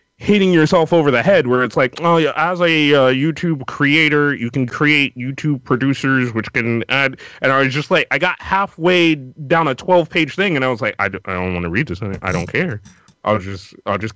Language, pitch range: English, 110-145 Hz